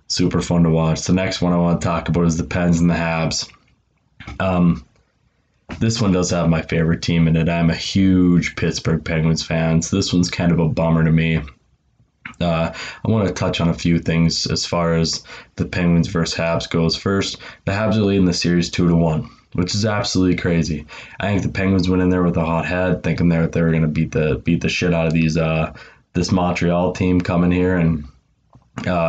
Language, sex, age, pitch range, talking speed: English, male, 20-39, 80-90 Hz, 215 wpm